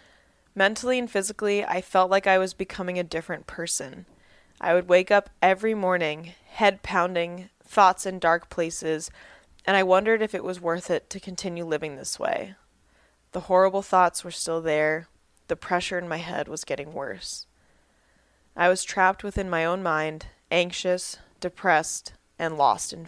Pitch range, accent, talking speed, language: 160-190 Hz, American, 165 wpm, English